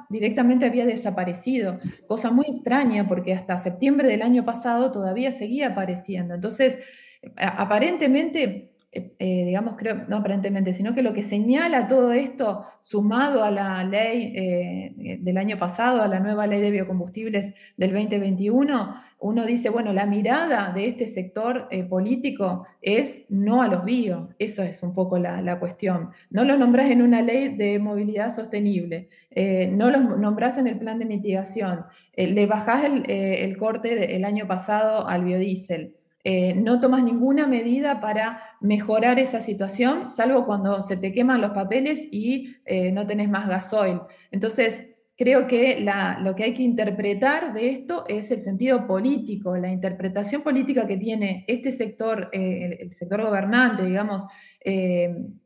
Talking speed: 155 wpm